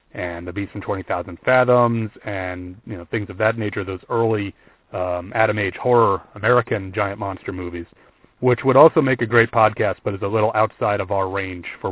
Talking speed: 200 wpm